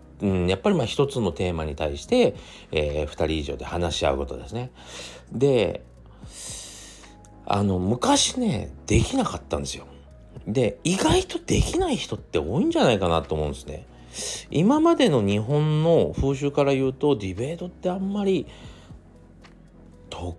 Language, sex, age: Japanese, male, 40-59